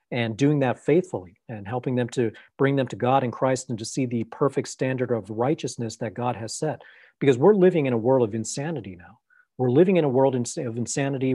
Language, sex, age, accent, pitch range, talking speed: English, male, 40-59, American, 120-145 Hz, 220 wpm